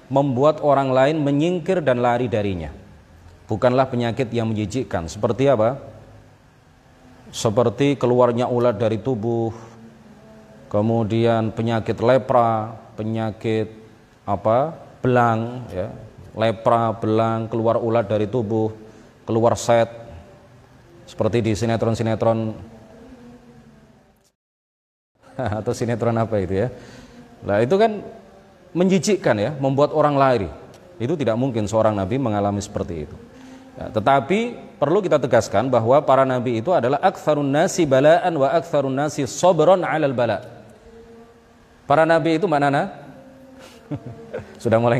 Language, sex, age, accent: Indonesian, male, 30-49, native